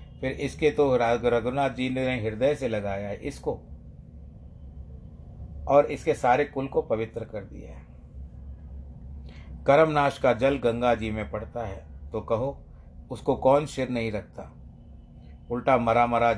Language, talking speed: Hindi, 140 wpm